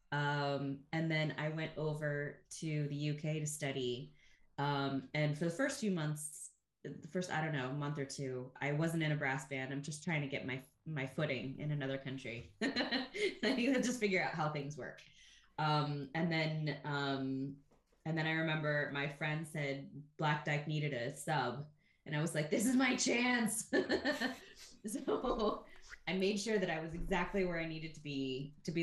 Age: 20-39